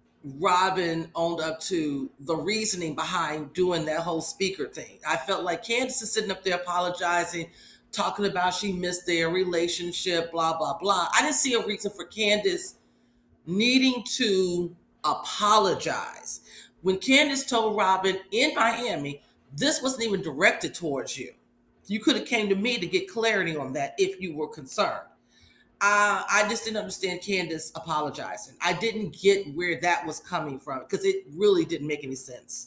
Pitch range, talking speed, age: 165-215 Hz, 165 wpm, 40-59